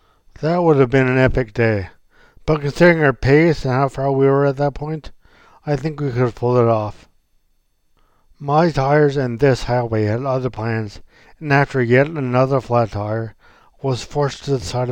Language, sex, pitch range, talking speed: English, male, 120-140 Hz, 185 wpm